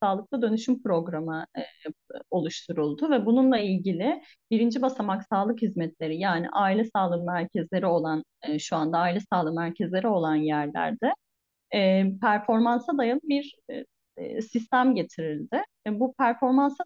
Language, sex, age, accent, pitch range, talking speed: Turkish, female, 30-49, native, 175-250 Hz, 125 wpm